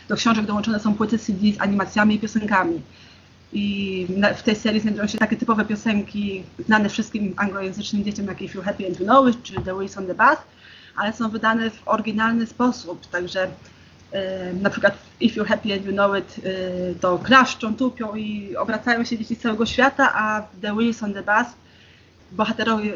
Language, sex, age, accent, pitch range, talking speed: Polish, female, 20-39, native, 200-230 Hz, 190 wpm